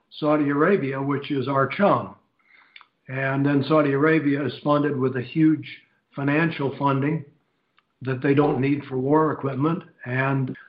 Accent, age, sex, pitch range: American, 60-79, male, 135-150 Hz